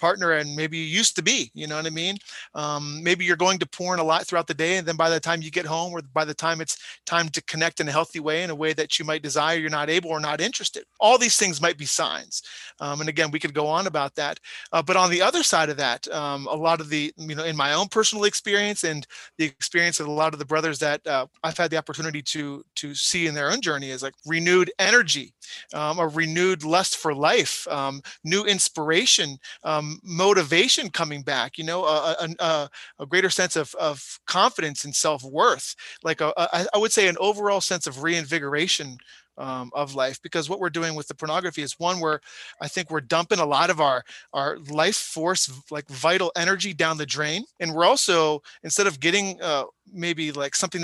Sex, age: male, 30-49